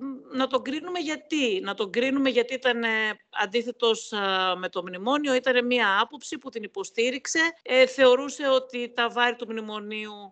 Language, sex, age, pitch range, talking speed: Greek, female, 50-69, 185-255 Hz, 145 wpm